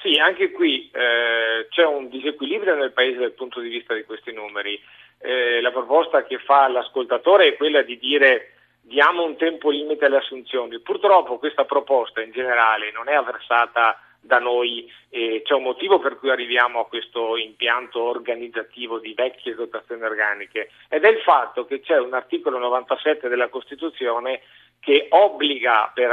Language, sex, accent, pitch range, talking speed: Italian, male, native, 125-190 Hz, 165 wpm